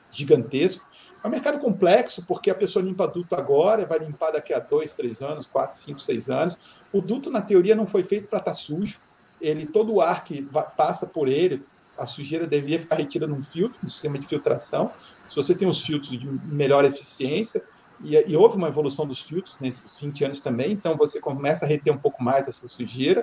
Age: 40-59